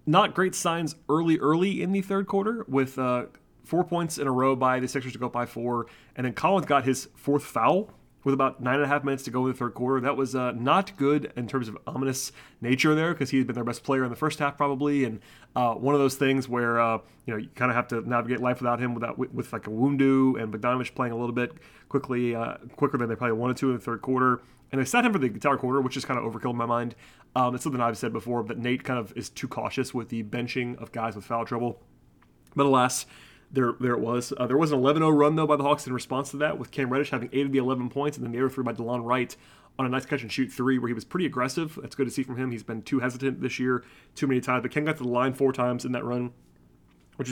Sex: male